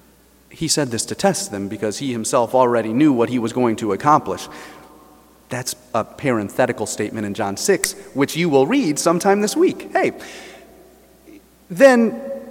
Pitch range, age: 130-200 Hz, 30-49